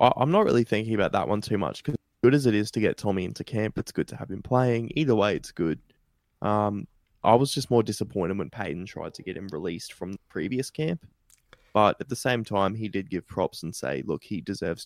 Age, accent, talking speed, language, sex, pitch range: 20-39, Australian, 240 wpm, English, male, 100-120 Hz